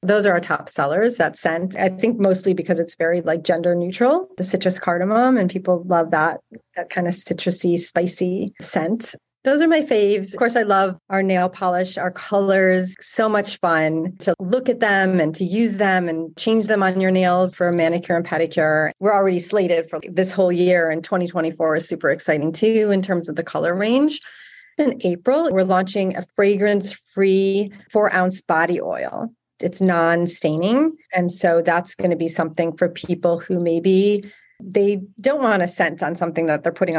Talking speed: 185 wpm